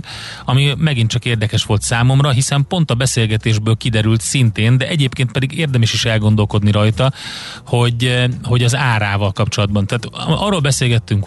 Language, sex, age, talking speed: Hungarian, male, 30-49, 145 wpm